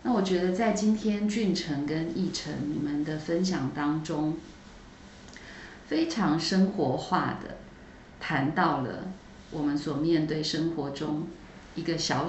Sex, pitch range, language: female, 155-210 Hz, Chinese